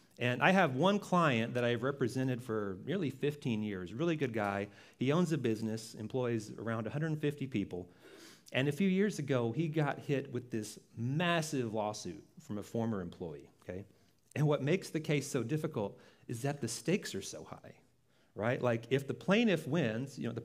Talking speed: 185 wpm